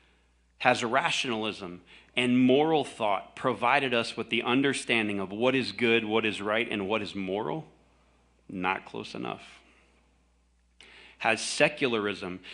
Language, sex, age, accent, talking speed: English, male, 40-59, American, 125 wpm